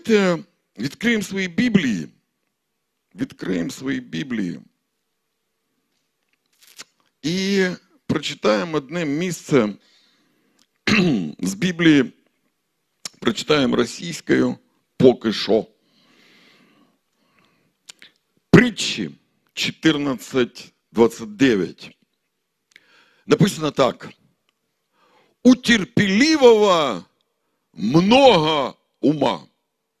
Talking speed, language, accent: 45 wpm, Russian, native